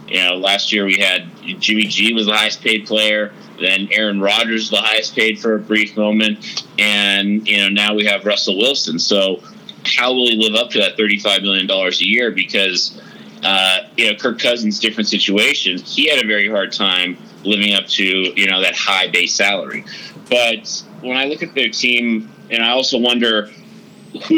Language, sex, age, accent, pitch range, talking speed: English, male, 30-49, American, 105-130 Hz, 190 wpm